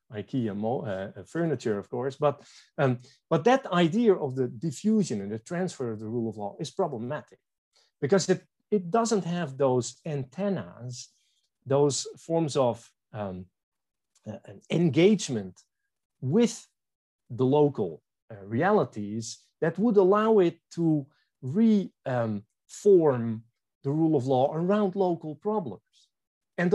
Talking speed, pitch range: 130 wpm, 115-175 Hz